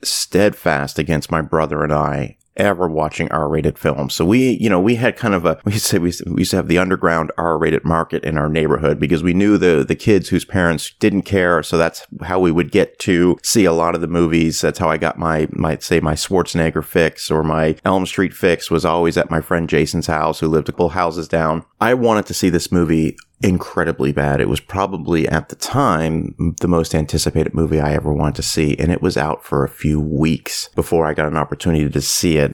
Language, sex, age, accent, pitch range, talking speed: English, male, 30-49, American, 80-95 Hz, 225 wpm